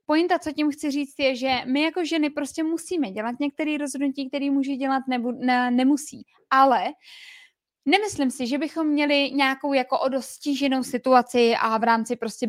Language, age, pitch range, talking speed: Czech, 20-39, 240-280 Hz, 165 wpm